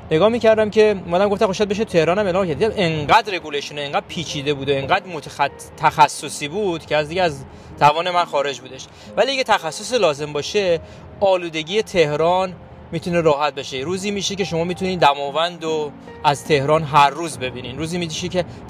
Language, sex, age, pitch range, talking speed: Persian, male, 30-49, 145-180 Hz, 165 wpm